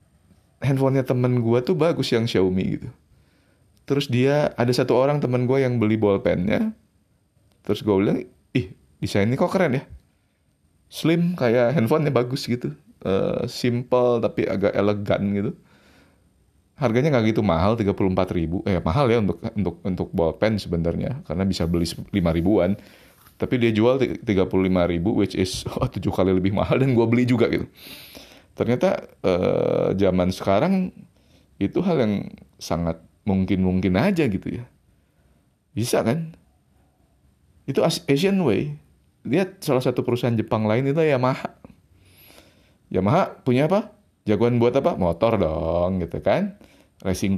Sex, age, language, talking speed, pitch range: male, 20-39, Indonesian, 135 wpm, 90-125 Hz